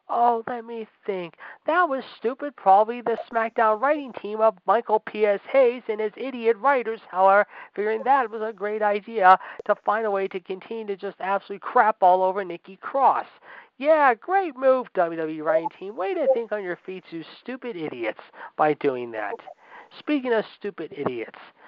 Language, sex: English, male